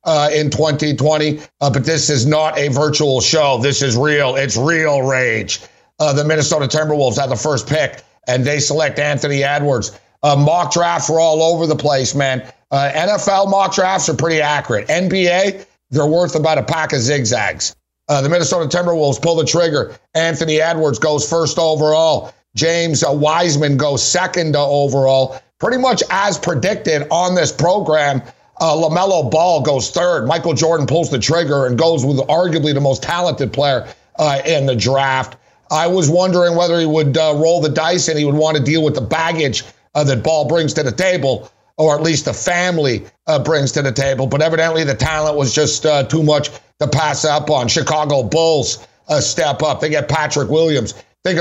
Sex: male